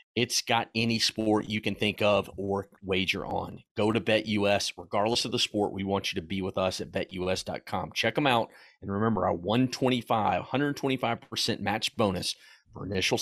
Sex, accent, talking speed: male, American, 175 wpm